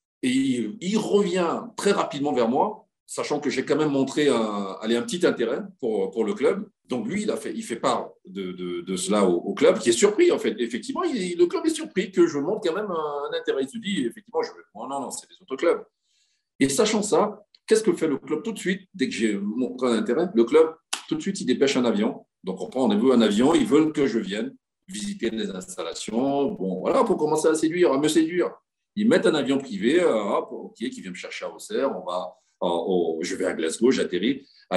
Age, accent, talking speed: 40-59, French, 240 wpm